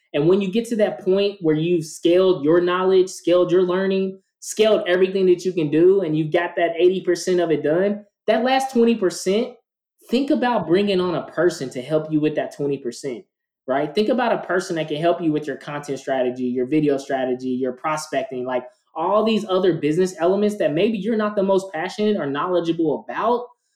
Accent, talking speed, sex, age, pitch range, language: American, 195 wpm, male, 20-39, 155-205 Hz, English